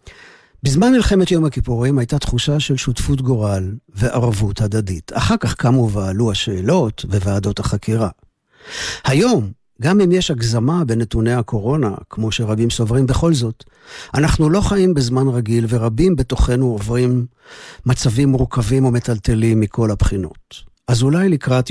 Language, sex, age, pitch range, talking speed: Hebrew, male, 50-69, 110-135 Hz, 125 wpm